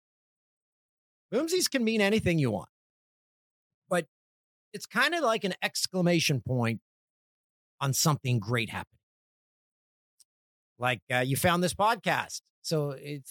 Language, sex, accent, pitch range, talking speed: English, male, American, 120-180 Hz, 115 wpm